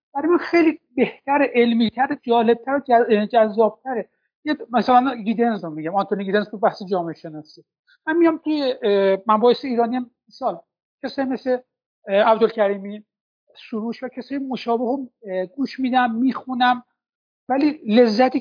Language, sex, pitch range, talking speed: Persian, male, 200-255 Hz, 115 wpm